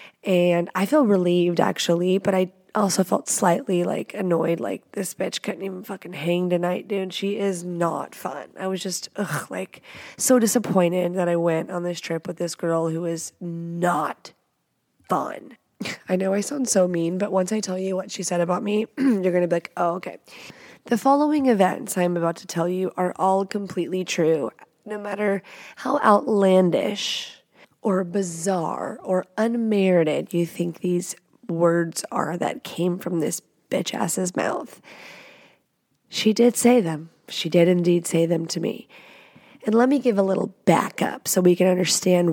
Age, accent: 20-39, American